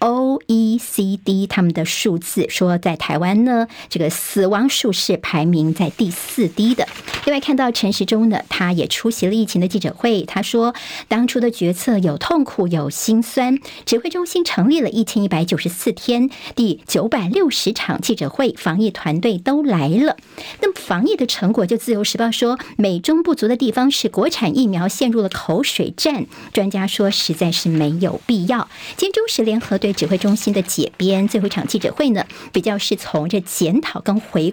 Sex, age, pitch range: male, 50-69, 185-250 Hz